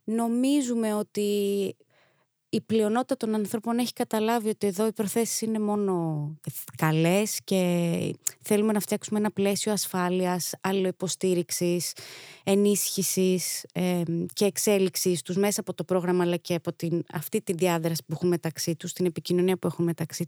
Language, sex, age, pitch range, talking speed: Greek, female, 20-39, 175-230 Hz, 140 wpm